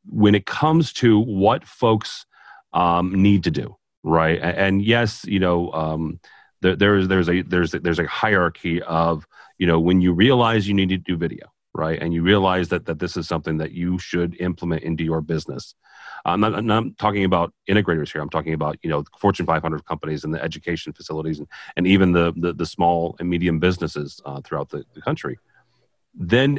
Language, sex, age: English, male, 40-59